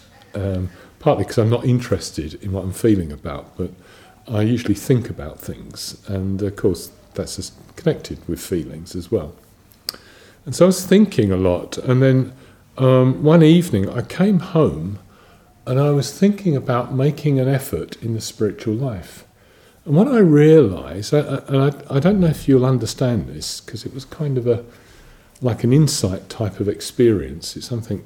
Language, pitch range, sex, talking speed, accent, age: English, 100-135 Hz, male, 170 wpm, British, 50-69